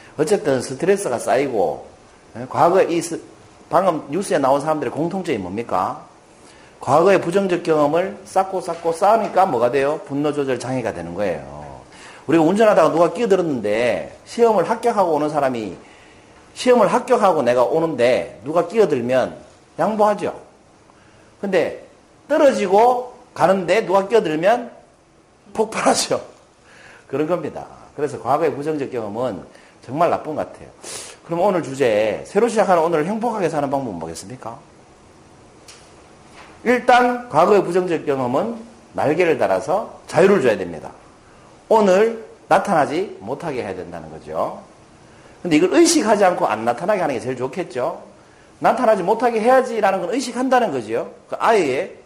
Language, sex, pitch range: Korean, male, 145-225 Hz